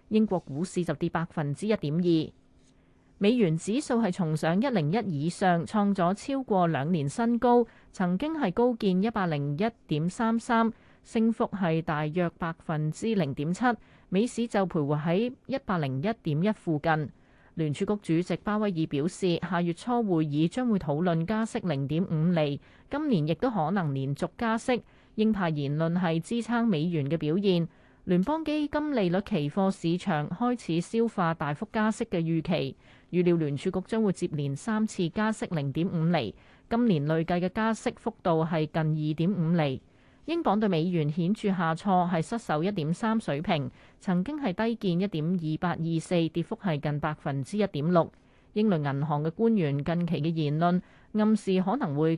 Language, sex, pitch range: Chinese, female, 160-215 Hz